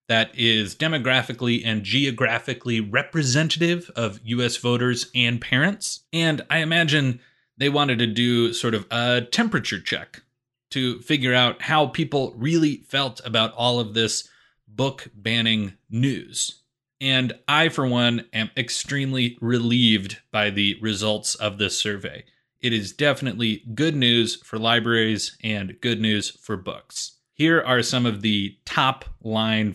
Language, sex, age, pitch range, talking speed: English, male, 30-49, 110-135 Hz, 135 wpm